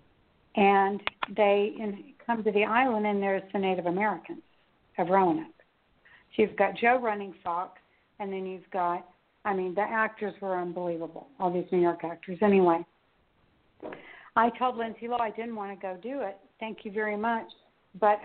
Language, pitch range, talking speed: English, 185-225 Hz, 170 wpm